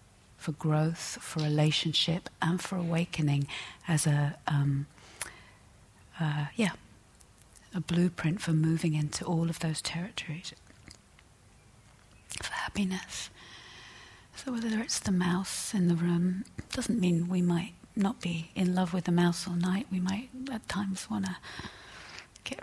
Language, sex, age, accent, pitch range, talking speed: English, female, 40-59, British, 145-180 Hz, 135 wpm